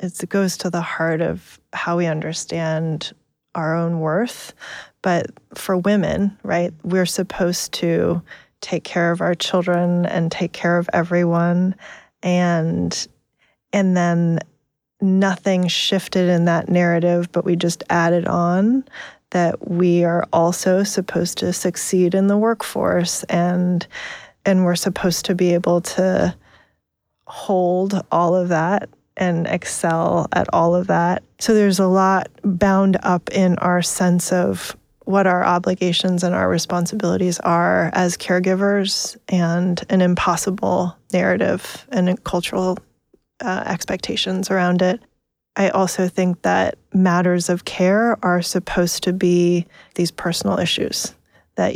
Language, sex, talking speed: English, female, 130 wpm